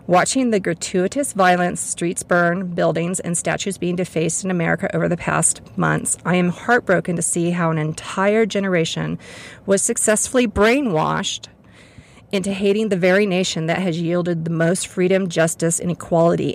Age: 40-59